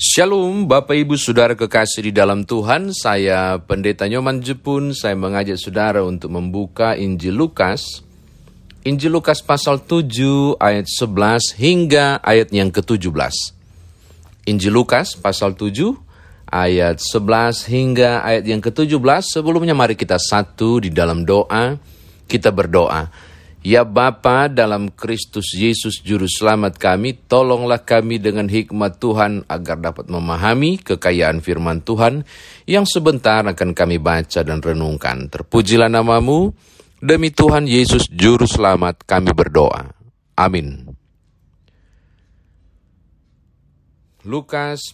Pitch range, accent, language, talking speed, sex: 90-125 Hz, native, Indonesian, 110 wpm, male